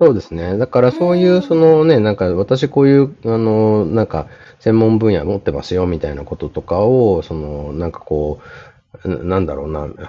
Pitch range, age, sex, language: 80-115 Hz, 30-49, male, Japanese